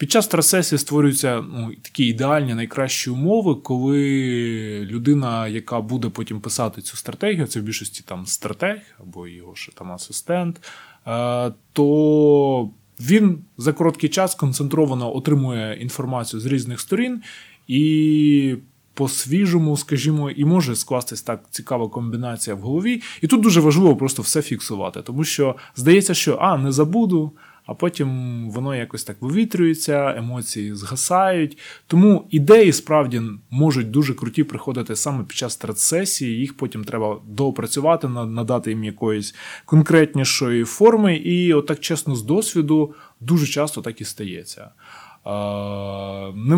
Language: Ukrainian